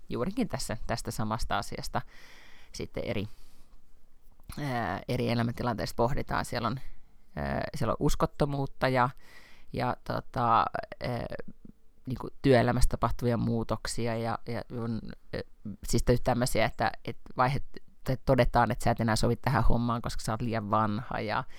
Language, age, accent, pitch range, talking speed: Finnish, 30-49, native, 115-130 Hz, 130 wpm